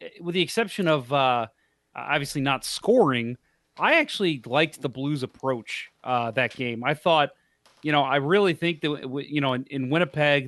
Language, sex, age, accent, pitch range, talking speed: English, male, 30-49, American, 125-155 Hz, 170 wpm